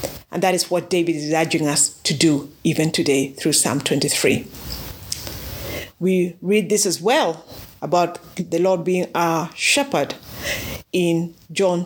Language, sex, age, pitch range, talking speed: English, female, 50-69, 170-235 Hz, 140 wpm